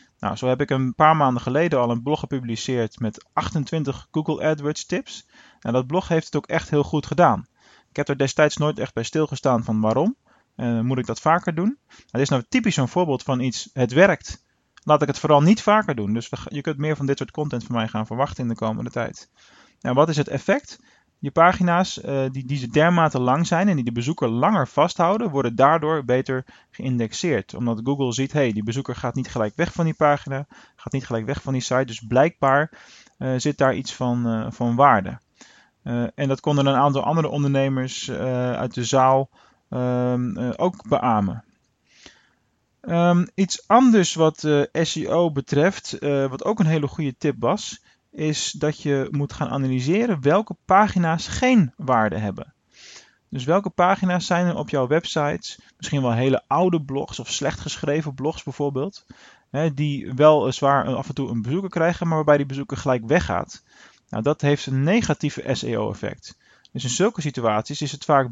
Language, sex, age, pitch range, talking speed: Dutch, male, 20-39, 130-160 Hz, 190 wpm